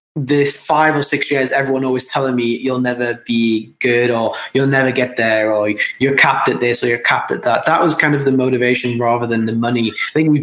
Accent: British